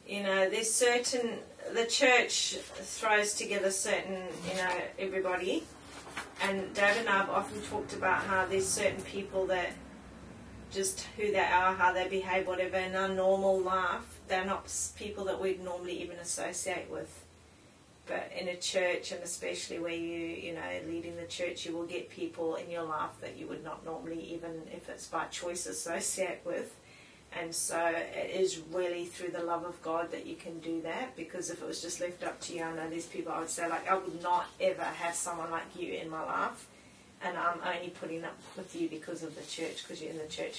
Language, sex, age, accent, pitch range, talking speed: English, female, 20-39, Australian, 170-190 Hz, 205 wpm